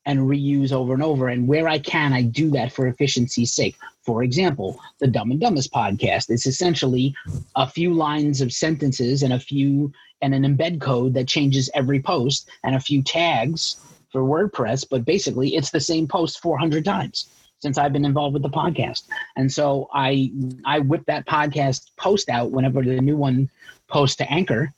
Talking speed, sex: 185 wpm, male